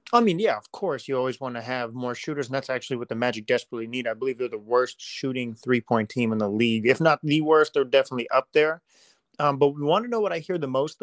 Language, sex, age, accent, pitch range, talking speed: English, male, 30-49, American, 120-145 Hz, 270 wpm